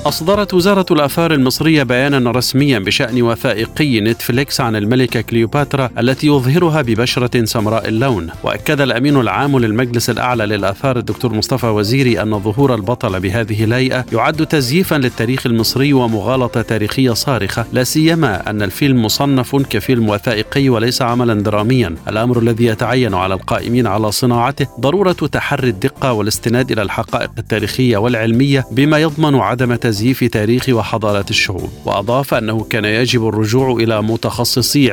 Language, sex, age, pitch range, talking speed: Arabic, male, 50-69, 110-135 Hz, 130 wpm